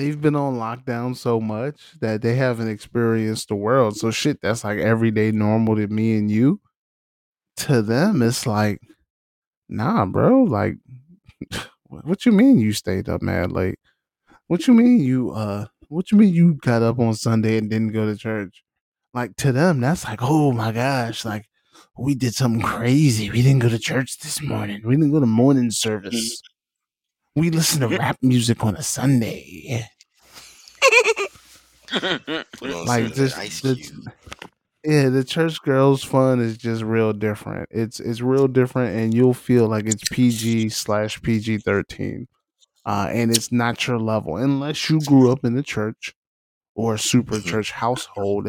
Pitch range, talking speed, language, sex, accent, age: 110-135 Hz, 160 wpm, English, male, American, 20-39